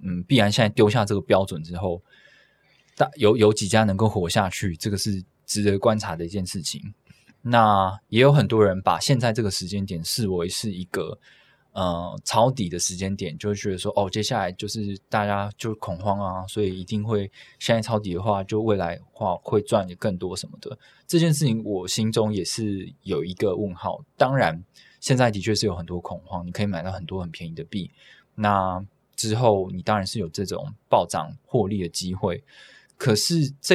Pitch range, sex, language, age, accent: 95-115 Hz, male, Chinese, 20-39, native